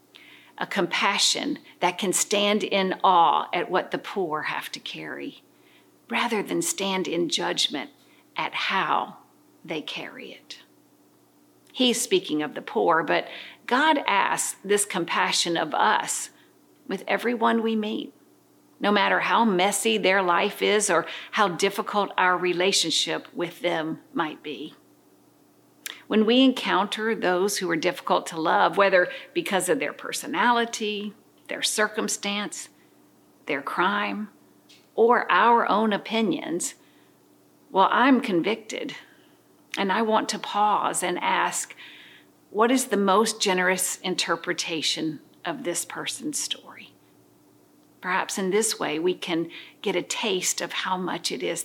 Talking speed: 130 wpm